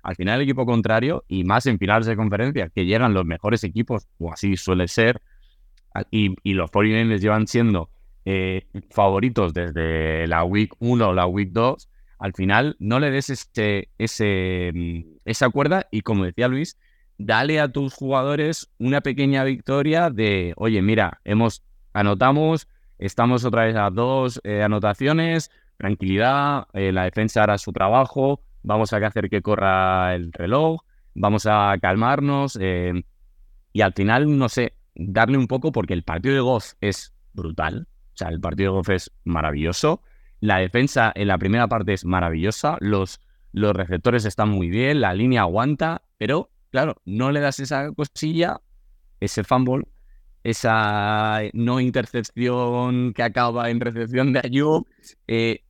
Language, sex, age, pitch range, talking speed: Spanish, male, 20-39, 95-125 Hz, 155 wpm